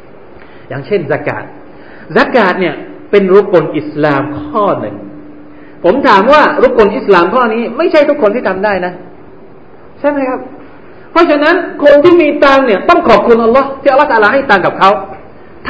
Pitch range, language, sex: 195-310 Hz, Thai, male